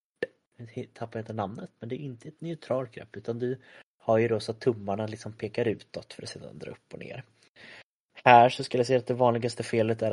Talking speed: 230 wpm